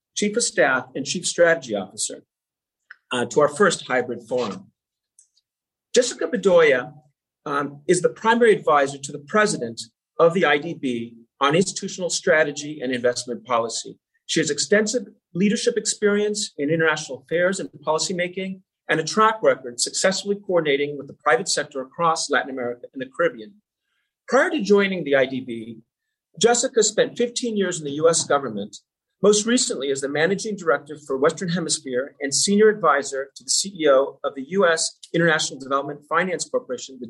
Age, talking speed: 40-59, 150 wpm